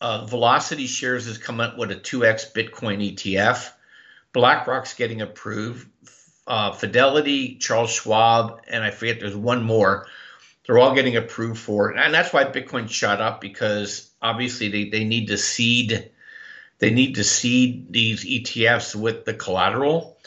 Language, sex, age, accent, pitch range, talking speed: English, male, 50-69, American, 110-135 Hz, 155 wpm